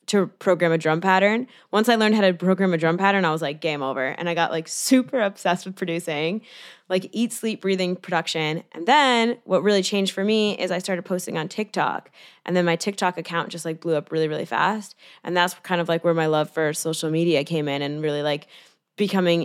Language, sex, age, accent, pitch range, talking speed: English, female, 10-29, American, 165-195 Hz, 230 wpm